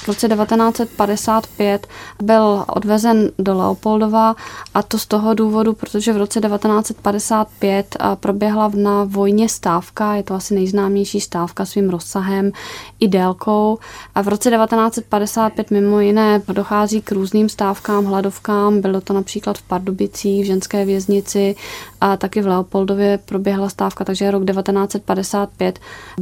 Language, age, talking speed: Czech, 20-39, 130 wpm